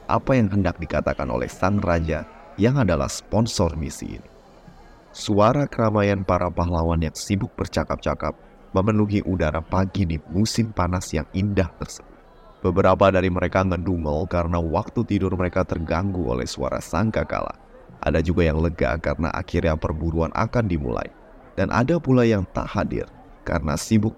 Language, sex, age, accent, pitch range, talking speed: Indonesian, male, 30-49, native, 80-100 Hz, 140 wpm